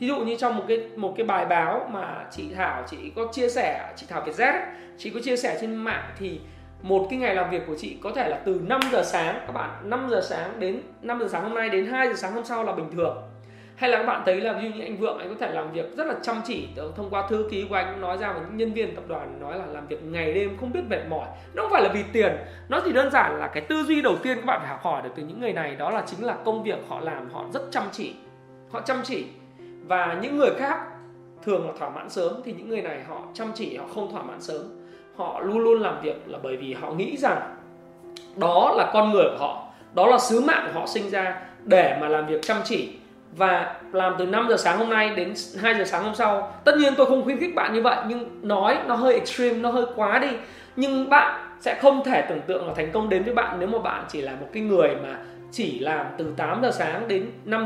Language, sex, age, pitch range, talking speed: Vietnamese, male, 20-39, 180-240 Hz, 270 wpm